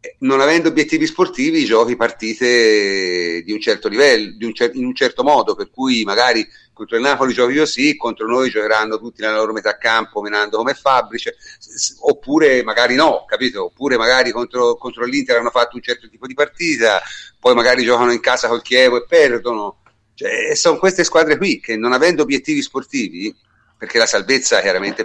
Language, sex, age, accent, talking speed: Italian, male, 40-59, native, 190 wpm